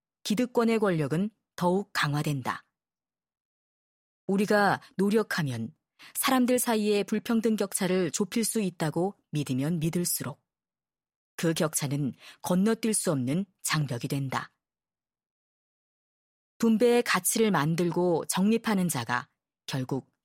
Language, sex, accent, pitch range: Korean, female, native, 155-220 Hz